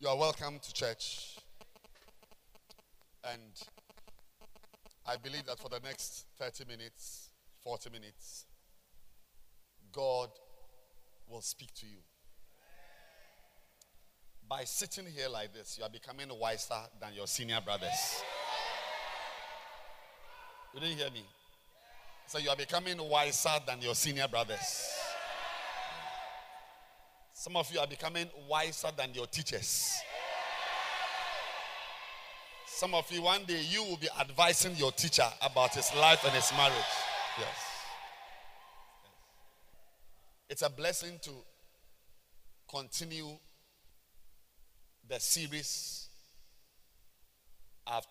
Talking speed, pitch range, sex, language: 100 wpm, 115-175 Hz, male, English